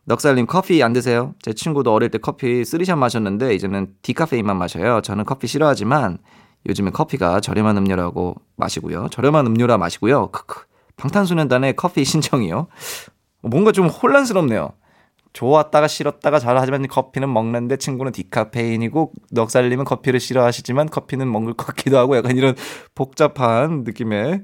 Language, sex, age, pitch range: Korean, male, 20-39, 115-160 Hz